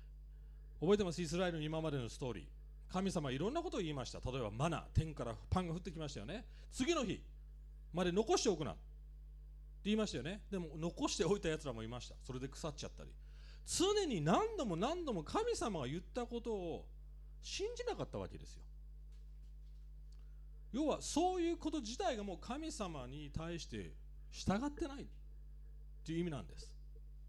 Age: 40-59